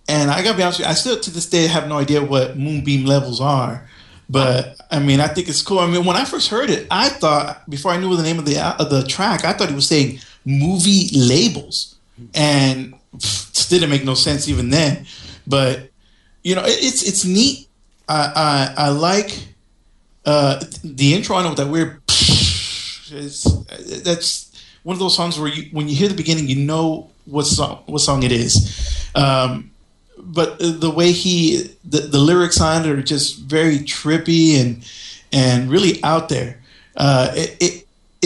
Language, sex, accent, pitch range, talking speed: English, male, American, 140-170 Hz, 190 wpm